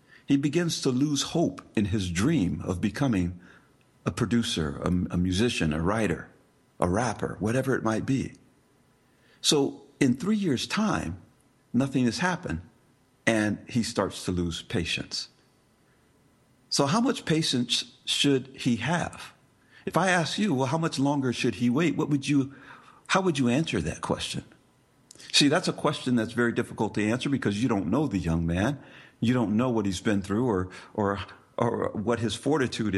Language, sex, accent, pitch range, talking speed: English, male, American, 100-135 Hz, 170 wpm